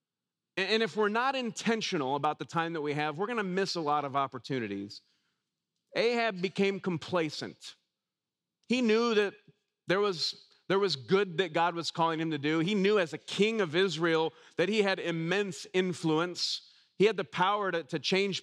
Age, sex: 40-59, male